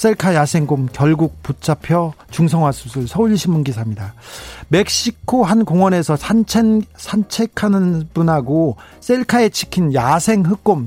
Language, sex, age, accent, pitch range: Korean, male, 40-59, native, 135-205 Hz